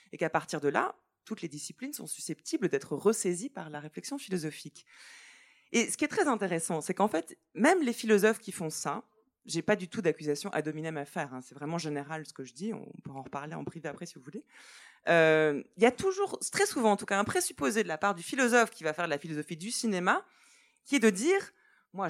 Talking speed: 240 wpm